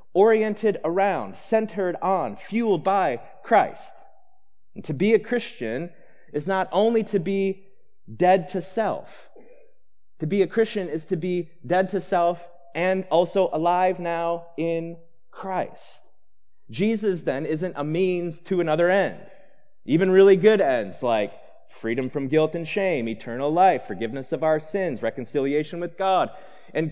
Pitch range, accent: 155-205 Hz, American